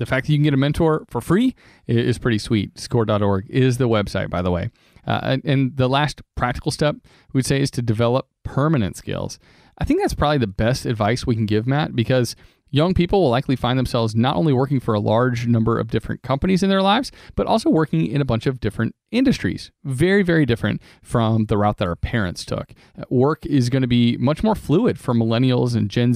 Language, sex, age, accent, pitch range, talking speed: English, male, 40-59, American, 115-145 Hz, 225 wpm